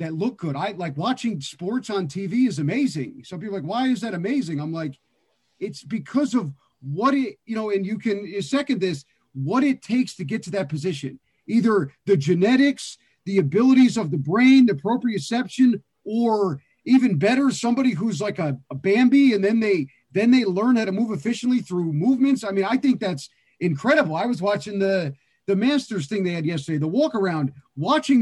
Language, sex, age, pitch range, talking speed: English, male, 40-59, 180-240 Hz, 195 wpm